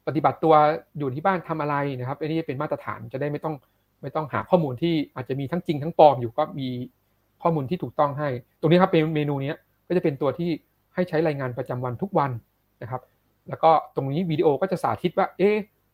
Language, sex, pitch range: Thai, male, 130-165 Hz